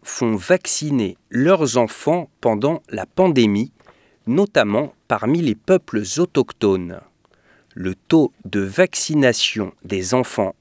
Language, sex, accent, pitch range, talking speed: English, male, French, 100-150 Hz, 100 wpm